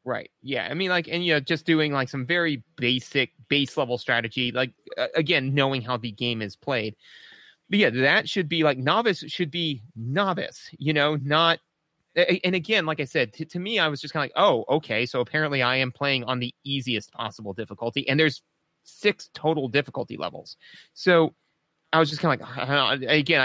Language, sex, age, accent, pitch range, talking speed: English, male, 30-49, American, 125-165 Hz, 200 wpm